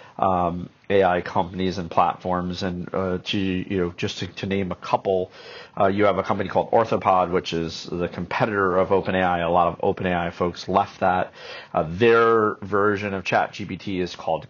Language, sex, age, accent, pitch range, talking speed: English, male, 40-59, American, 90-100 Hz, 180 wpm